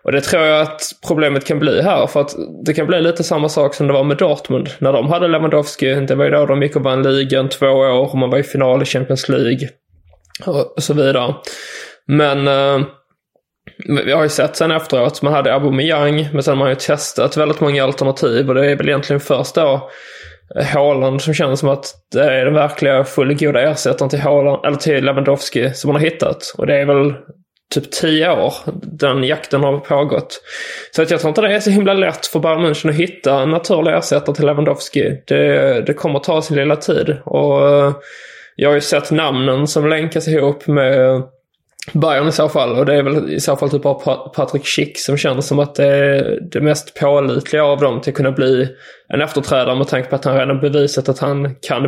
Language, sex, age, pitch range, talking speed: English, male, 20-39, 135-155 Hz, 215 wpm